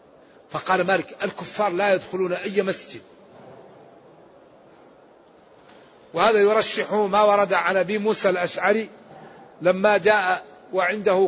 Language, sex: Arabic, male